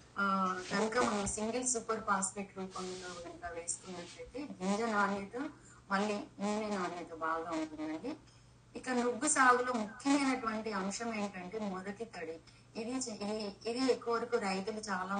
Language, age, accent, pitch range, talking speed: Telugu, 20-39, native, 180-230 Hz, 125 wpm